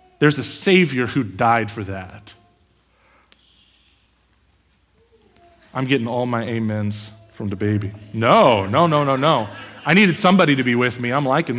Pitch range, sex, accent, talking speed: 110-150 Hz, male, American, 150 wpm